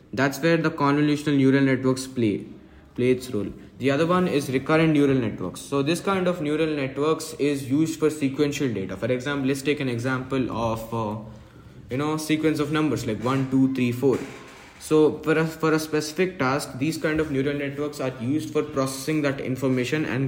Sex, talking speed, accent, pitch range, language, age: male, 190 wpm, Indian, 125-155 Hz, English, 20-39